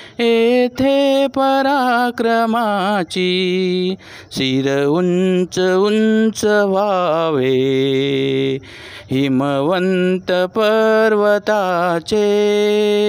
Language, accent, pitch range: Marathi, native, 185-245 Hz